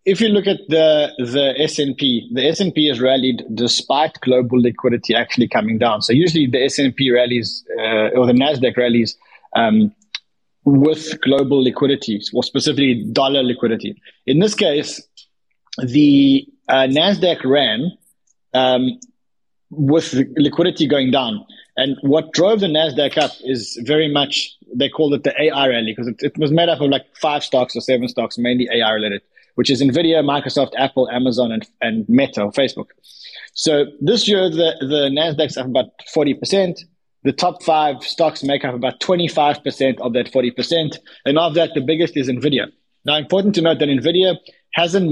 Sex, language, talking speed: male, English, 165 wpm